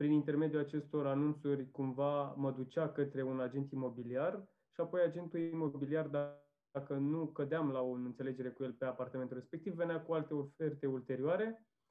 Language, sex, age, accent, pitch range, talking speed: Romanian, male, 20-39, native, 130-155 Hz, 155 wpm